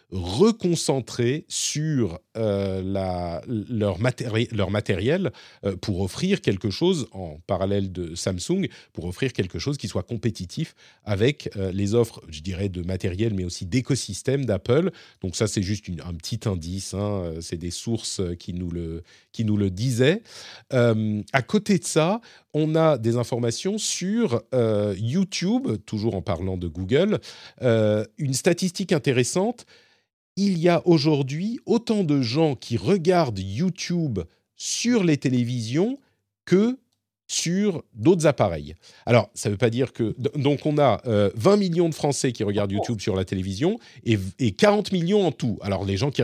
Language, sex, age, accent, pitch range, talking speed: French, male, 40-59, French, 100-155 Hz, 160 wpm